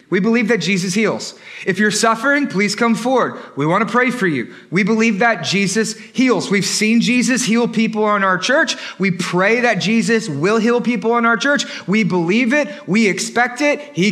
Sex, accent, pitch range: male, American, 220-275 Hz